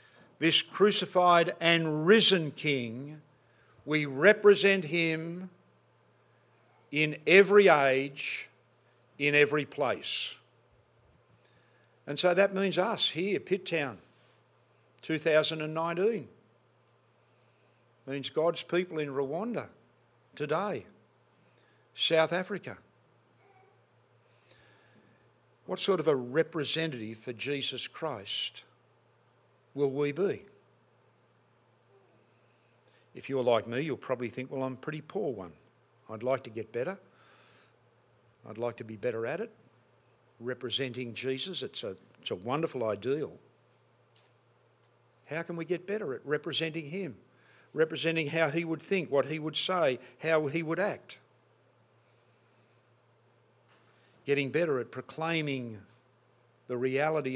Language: English